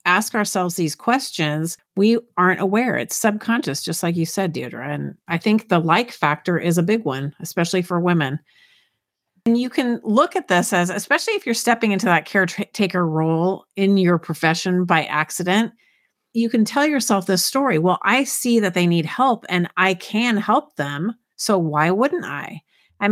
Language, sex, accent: English, female, American